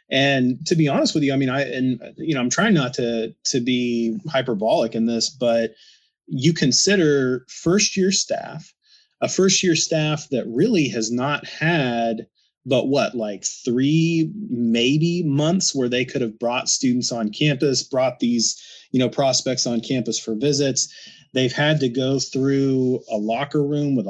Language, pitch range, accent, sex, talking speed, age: English, 120-155 Hz, American, male, 170 wpm, 30-49